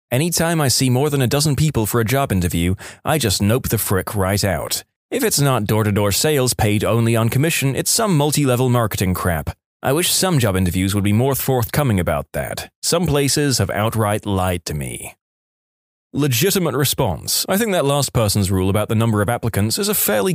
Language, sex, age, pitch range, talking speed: English, male, 20-39, 100-145 Hz, 200 wpm